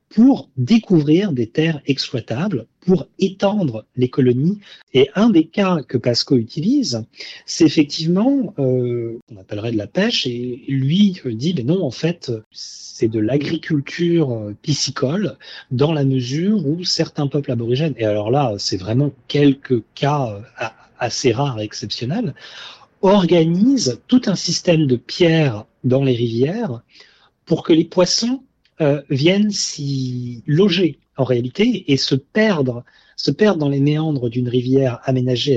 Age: 40-59